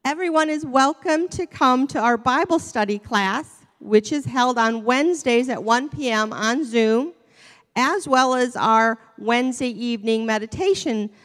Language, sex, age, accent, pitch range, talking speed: English, female, 40-59, American, 210-260 Hz, 145 wpm